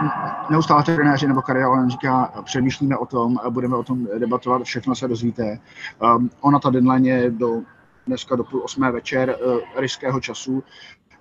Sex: male